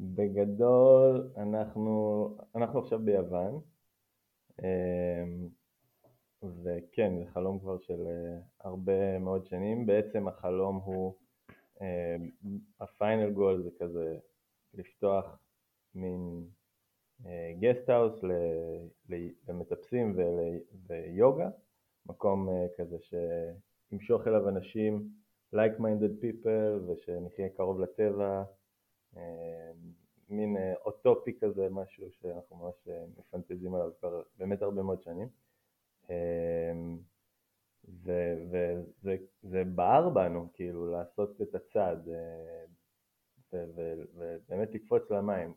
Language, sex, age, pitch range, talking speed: Hebrew, male, 20-39, 85-105 Hz, 80 wpm